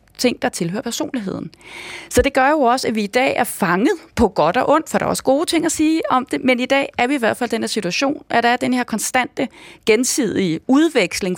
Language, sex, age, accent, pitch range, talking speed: Danish, female, 30-49, native, 205-260 Hz, 260 wpm